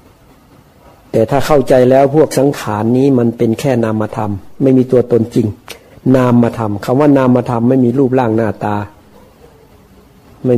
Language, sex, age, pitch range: Thai, male, 60-79, 110-125 Hz